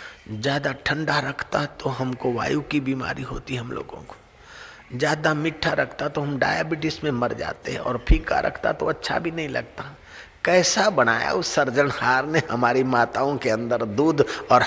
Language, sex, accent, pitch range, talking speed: Hindi, male, native, 135-180 Hz, 170 wpm